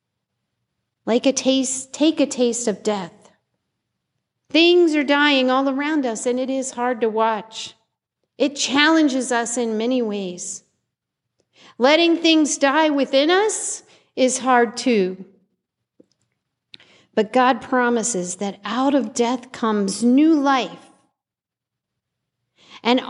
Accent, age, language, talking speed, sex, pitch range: American, 50-69, English, 115 wpm, female, 240-310 Hz